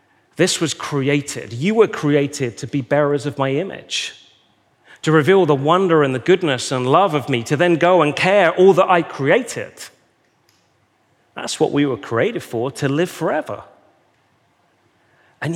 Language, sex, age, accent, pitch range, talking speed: English, male, 30-49, British, 130-165 Hz, 160 wpm